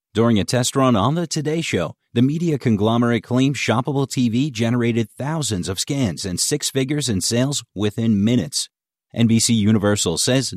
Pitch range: 105-135 Hz